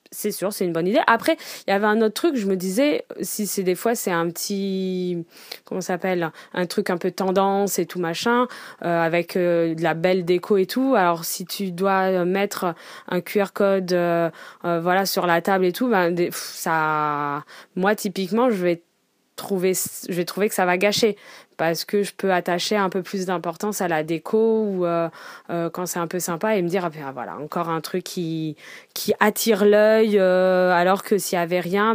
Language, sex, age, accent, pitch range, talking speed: French, female, 20-39, French, 175-210 Hz, 210 wpm